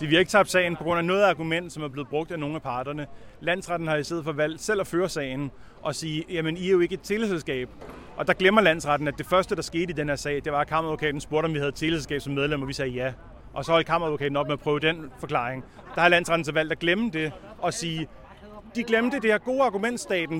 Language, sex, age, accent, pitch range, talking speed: Danish, male, 30-49, native, 145-175 Hz, 270 wpm